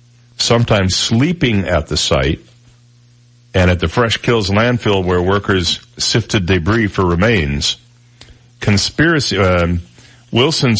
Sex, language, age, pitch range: male, English, 50-69, 90-120 Hz